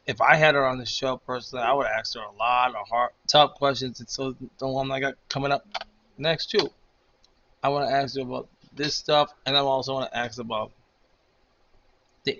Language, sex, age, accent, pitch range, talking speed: English, male, 20-39, American, 125-140 Hz, 215 wpm